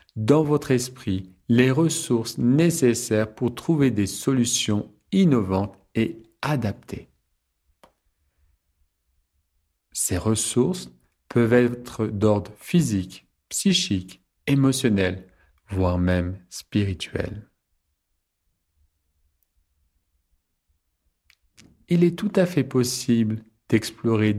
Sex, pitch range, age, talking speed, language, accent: male, 85-125 Hz, 40-59, 75 wpm, French, French